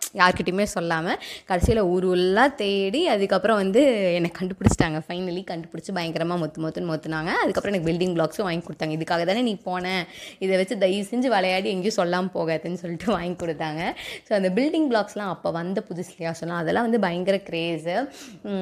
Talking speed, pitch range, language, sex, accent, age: 155 wpm, 175-215 Hz, Tamil, female, native, 20-39